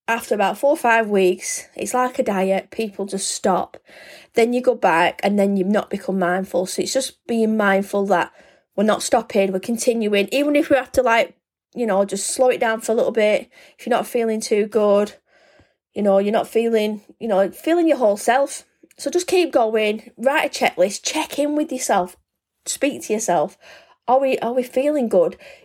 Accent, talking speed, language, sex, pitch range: British, 205 wpm, English, female, 210-275 Hz